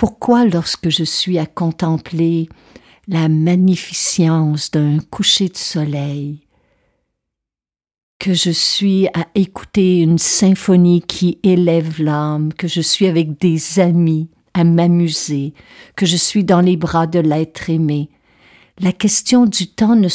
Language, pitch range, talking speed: French, 155-190 Hz, 130 wpm